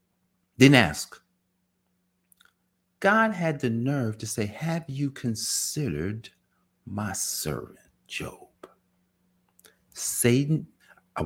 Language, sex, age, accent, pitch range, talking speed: English, male, 50-69, American, 90-150 Hz, 85 wpm